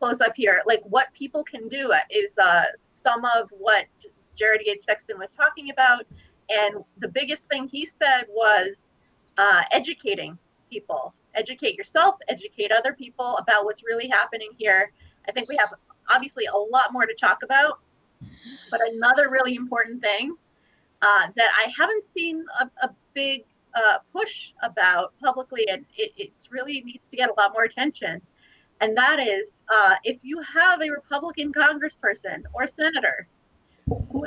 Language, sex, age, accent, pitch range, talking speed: English, female, 30-49, American, 230-325 Hz, 155 wpm